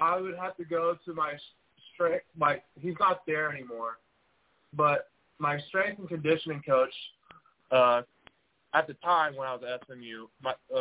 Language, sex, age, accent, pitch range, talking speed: English, male, 20-39, American, 130-175 Hz, 170 wpm